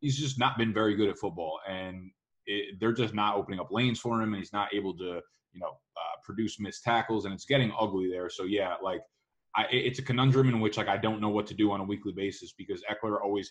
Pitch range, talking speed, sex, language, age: 95-115 Hz, 250 wpm, male, English, 20-39